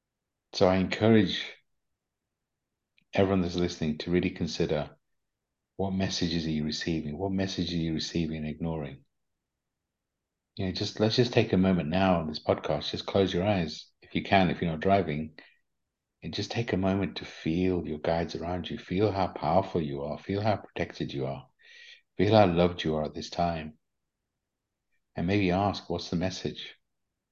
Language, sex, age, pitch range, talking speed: English, male, 50-69, 80-95 Hz, 175 wpm